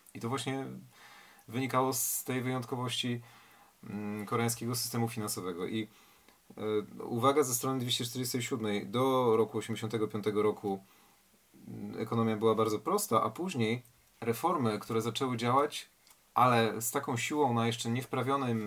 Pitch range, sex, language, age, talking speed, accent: 110-135 Hz, male, Polish, 40-59, 115 wpm, native